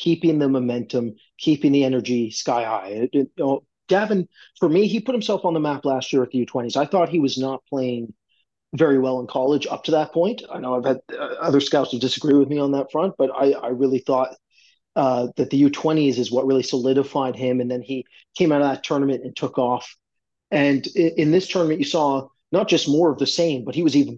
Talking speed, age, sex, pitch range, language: 230 wpm, 30-49, male, 130-150 Hz, English